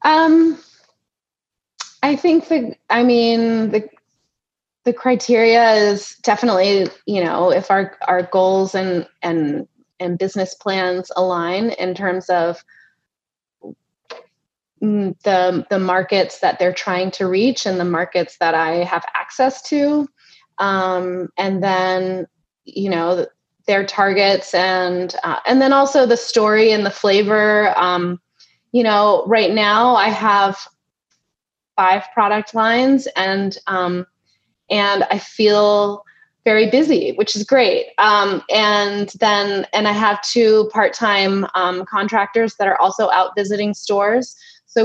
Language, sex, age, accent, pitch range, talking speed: English, female, 20-39, American, 185-230 Hz, 130 wpm